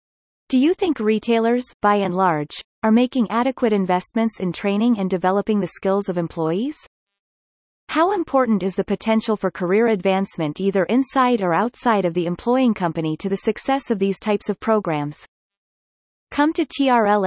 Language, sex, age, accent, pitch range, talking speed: English, female, 30-49, American, 190-240 Hz, 160 wpm